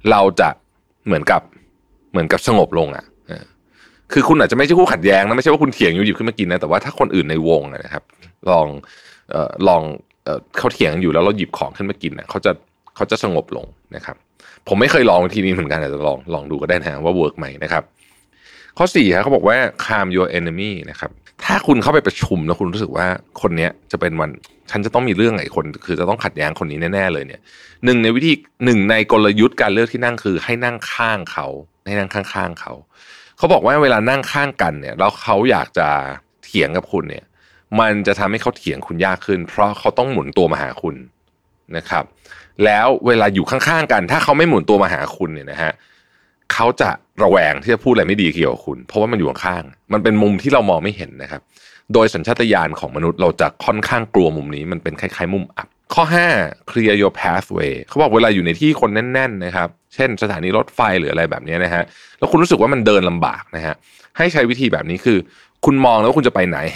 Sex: male